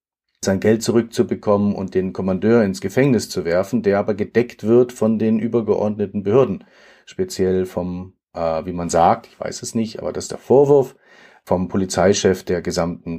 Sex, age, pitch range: male, 40-59, 95-115 Hz